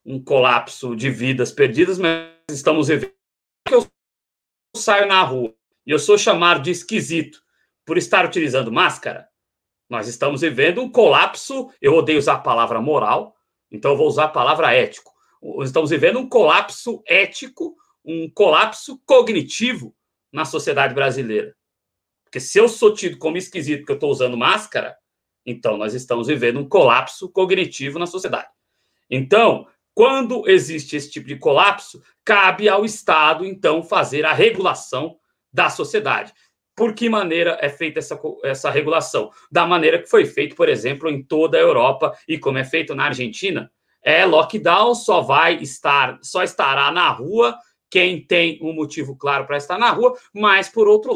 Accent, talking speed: Brazilian, 160 wpm